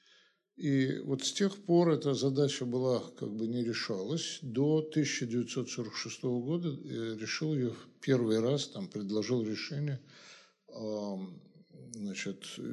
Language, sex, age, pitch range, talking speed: Russian, male, 60-79, 120-165 Hz, 110 wpm